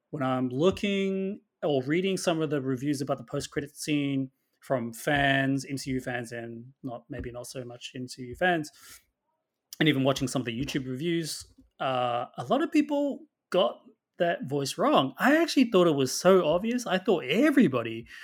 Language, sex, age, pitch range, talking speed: English, male, 30-49, 130-185 Hz, 175 wpm